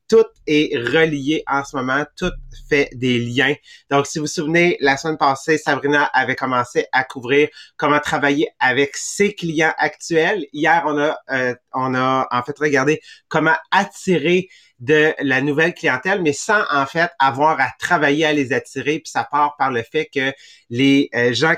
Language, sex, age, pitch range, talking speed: English, male, 30-49, 130-160 Hz, 180 wpm